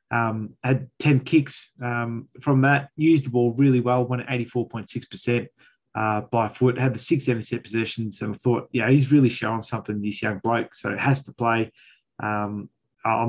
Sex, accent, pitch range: male, Australian, 115-135 Hz